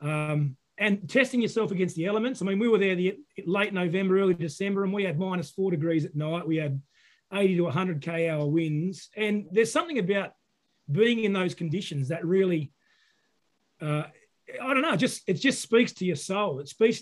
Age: 30-49